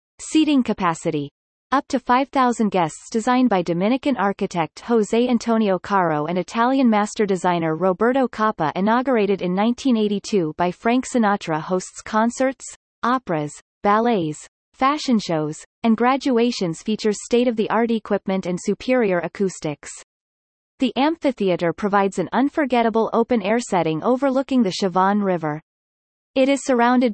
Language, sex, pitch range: English, female, 180-245 Hz